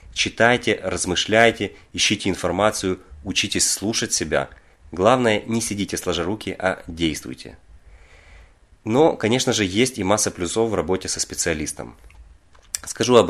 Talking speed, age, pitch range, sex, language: 120 wpm, 30-49, 85-110 Hz, male, Russian